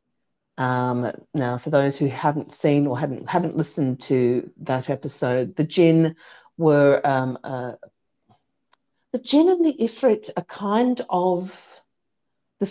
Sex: female